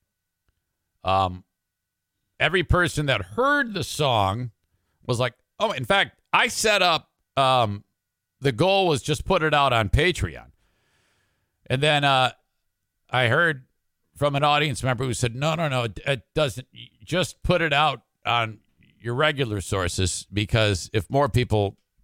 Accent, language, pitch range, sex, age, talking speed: American, English, 105-160 Hz, male, 50-69, 145 wpm